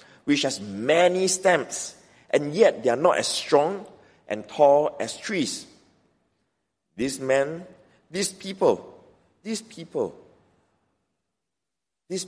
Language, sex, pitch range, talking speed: English, male, 125-175 Hz, 110 wpm